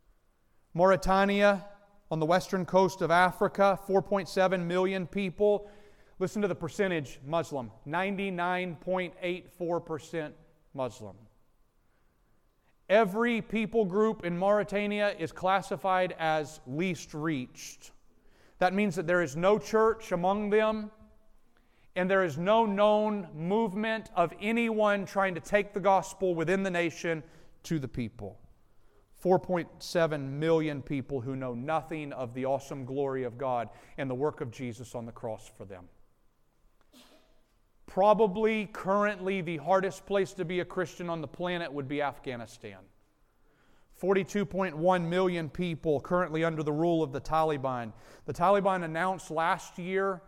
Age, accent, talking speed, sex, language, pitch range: 40-59, American, 130 wpm, male, English, 150-195 Hz